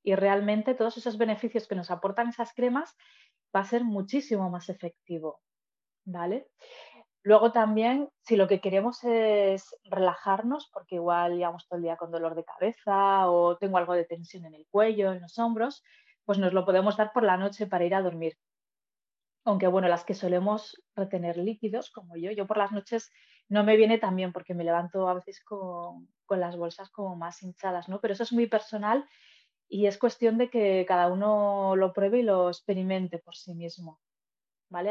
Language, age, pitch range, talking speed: Spanish, 20-39, 185-220 Hz, 190 wpm